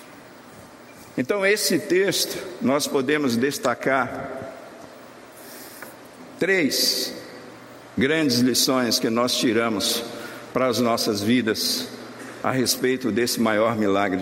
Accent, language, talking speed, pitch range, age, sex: Brazilian, Portuguese, 90 wpm, 120-190 Hz, 60-79, male